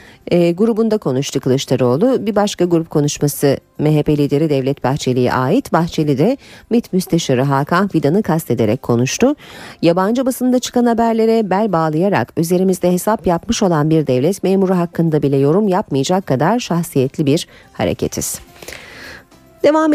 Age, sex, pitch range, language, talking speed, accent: 40-59, female, 140-205 Hz, Turkish, 125 wpm, native